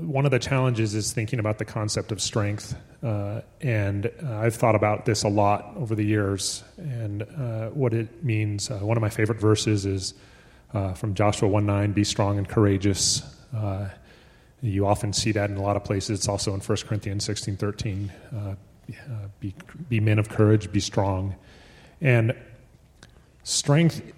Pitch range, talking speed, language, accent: 105-125 Hz, 175 wpm, English, American